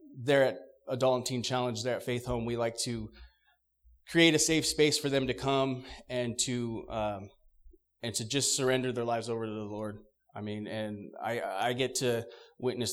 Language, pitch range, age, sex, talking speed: English, 110-135 Hz, 30-49, male, 195 wpm